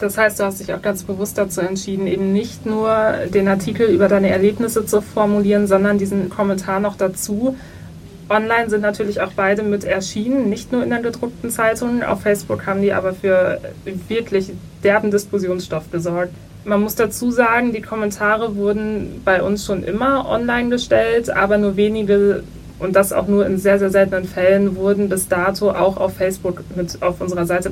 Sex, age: female, 20-39